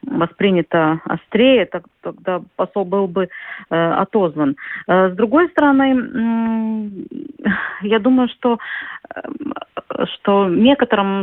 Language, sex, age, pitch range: Russian, female, 30-49, 175-245 Hz